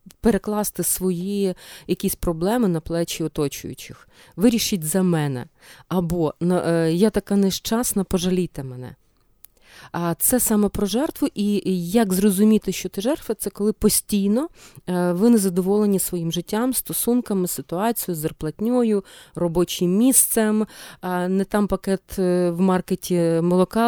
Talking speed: 120 wpm